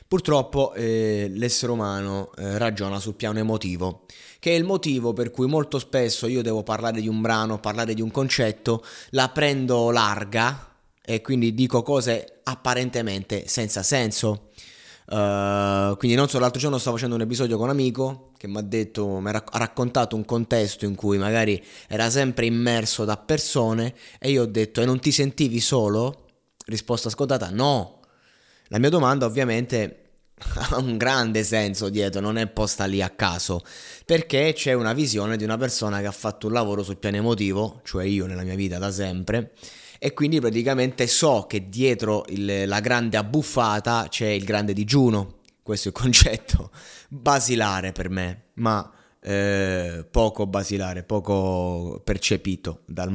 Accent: native